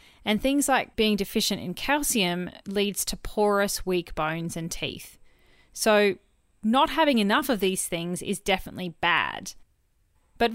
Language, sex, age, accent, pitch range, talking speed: English, female, 30-49, Australian, 185-235 Hz, 140 wpm